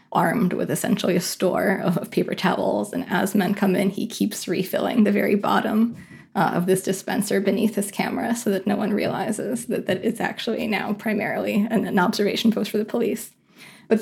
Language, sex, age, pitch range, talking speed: English, female, 20-39, 190-215 Hz, 195 wpm